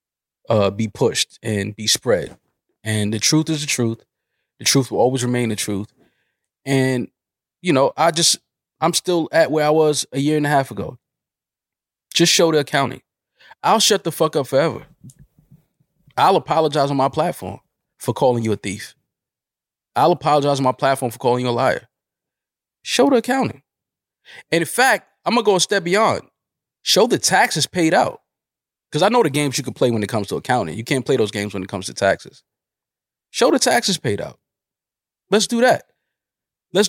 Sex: male